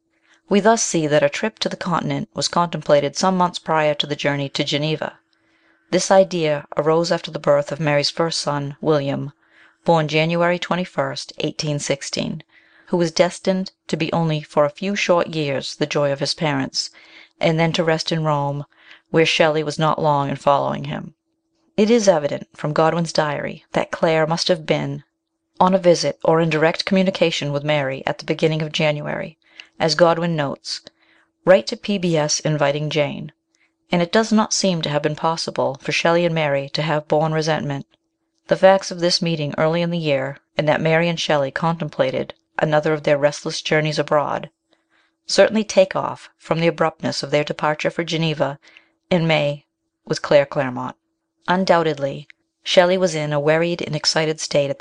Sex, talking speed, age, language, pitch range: female, 175 wpm, 40-59, English, 150-185 Hz